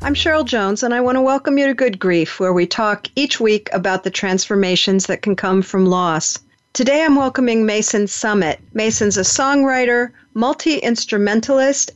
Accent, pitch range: American, 190-250 Hz